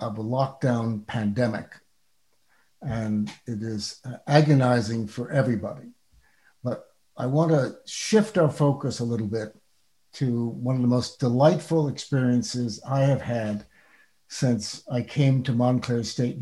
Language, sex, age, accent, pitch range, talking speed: English, male, 60-79, American, 120-145 Hz, 130 wpm